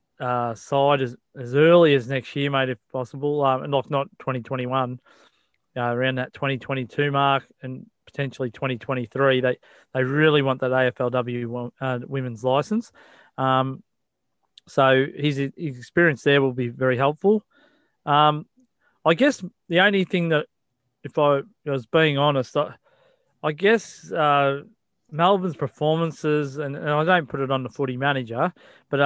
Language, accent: English, Australian